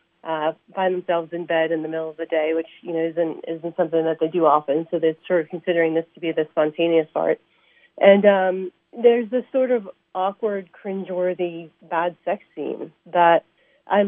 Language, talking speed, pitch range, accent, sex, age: English, 190 wpm, 165-190 Hz, American, female, 40-59